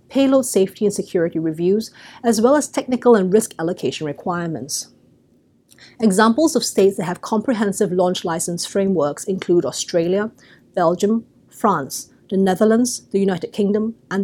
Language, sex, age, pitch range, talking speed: English, female, 30-49, 180-230 Hz, 135 wpm